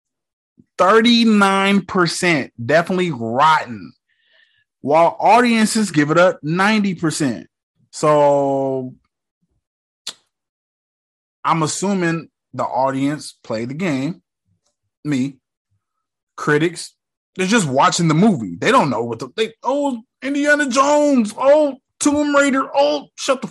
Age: 20-39